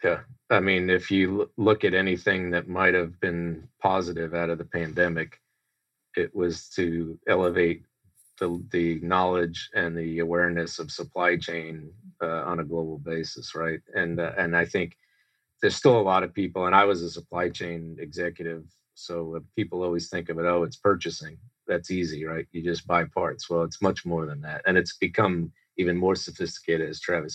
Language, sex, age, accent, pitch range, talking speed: English, male, 40-59, American, 85-95 Hz, 185 wpm